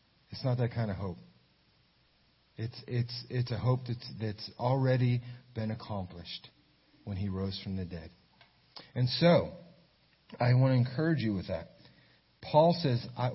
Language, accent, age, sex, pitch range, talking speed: English, American, 40-59, male, 95-125 Hz, 155 wpm